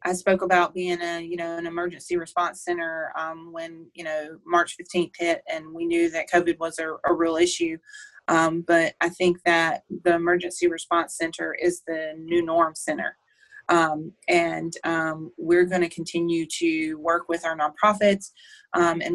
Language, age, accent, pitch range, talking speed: English, 30-49, American, 165-180 Hz, 175 wpm